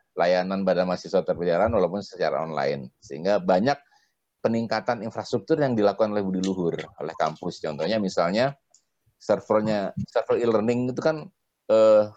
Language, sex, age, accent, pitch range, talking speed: Indonesian, male, 30-49, native, 95-115 Hz, 130 wpm